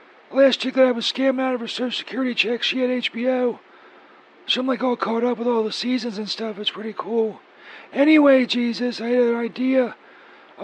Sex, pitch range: male, 235-265 Hz